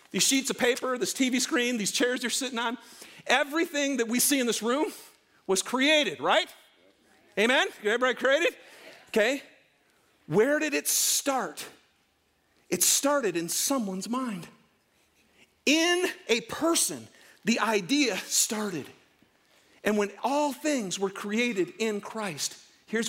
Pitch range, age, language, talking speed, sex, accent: 220-300 Hz, 50-69, English, 130 wpm, male, American